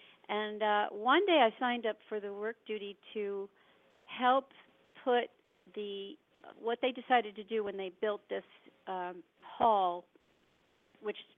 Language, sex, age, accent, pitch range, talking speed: English, female, 50-69, American, 190-235 Hz, 140 wpm